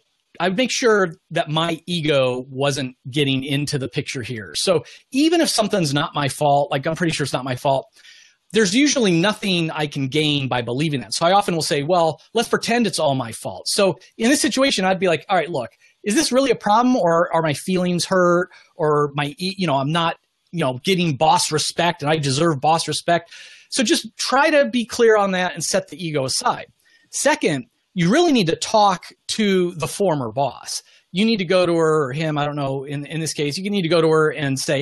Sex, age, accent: male, 30-49, American